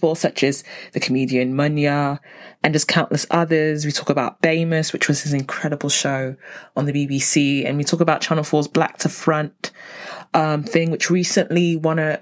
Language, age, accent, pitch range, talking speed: English, 20-39, British, 145-220 Hz, 175 wpm